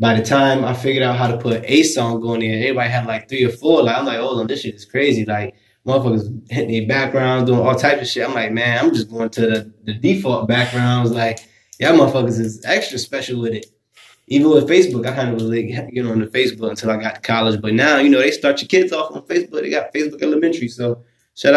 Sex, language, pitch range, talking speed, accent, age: male, English, 115-125 Hz, 255 wpm, American, 20-39